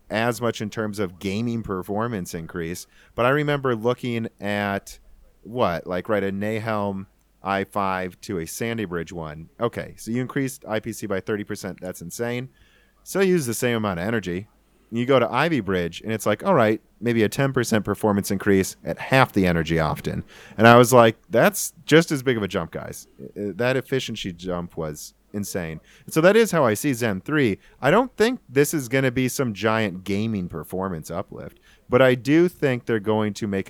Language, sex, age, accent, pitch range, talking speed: English, male, 30-49, American, 95-120 Hz, 190 wpm